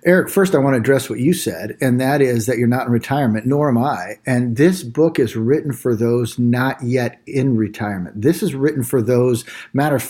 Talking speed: 220 wpm